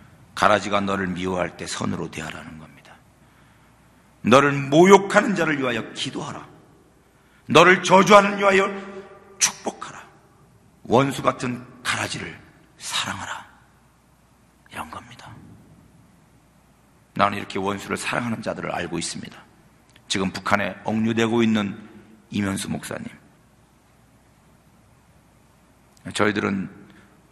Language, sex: Korean, male